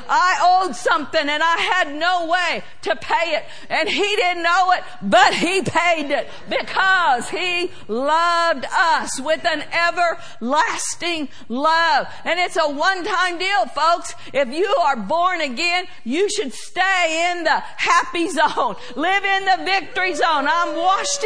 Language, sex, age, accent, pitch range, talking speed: English, female, 50-69, American, 320-375 Hz, 150 wpm